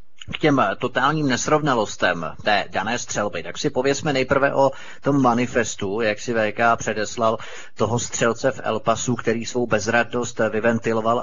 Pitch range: 110-125 Hz